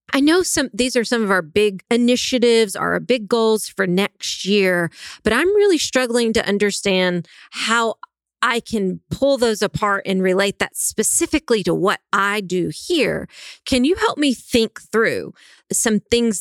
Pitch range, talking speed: 190-245 Hz, 165 wpm